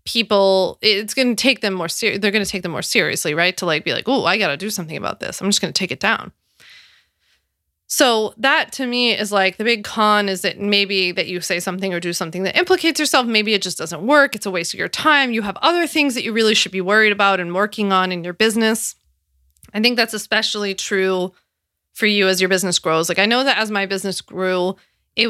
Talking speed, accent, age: 250 wpm, American, 20-39